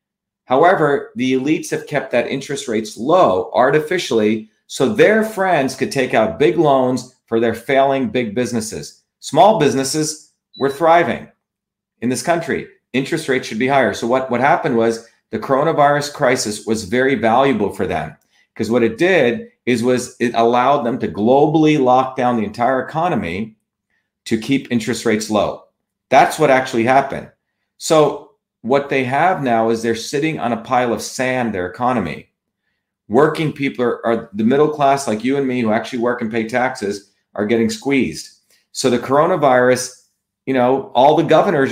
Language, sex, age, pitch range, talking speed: English, male, 40-59, 120-155 Hz, 165 wpm